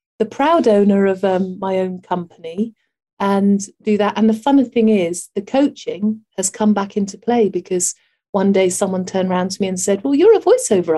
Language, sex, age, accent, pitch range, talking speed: English, female, 40-59, British, 195-245 Hz, 200 wpm